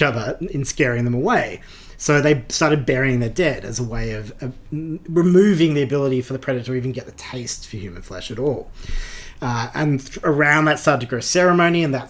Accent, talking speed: Australian, 210 wpm